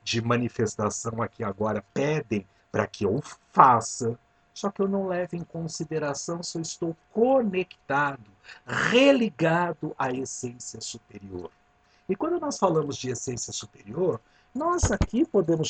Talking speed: 130 wpm